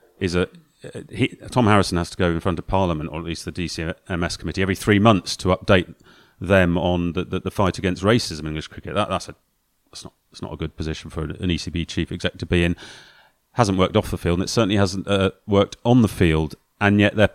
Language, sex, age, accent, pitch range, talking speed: English, male, 30-49, British, 85-105 Hz, 240 wpm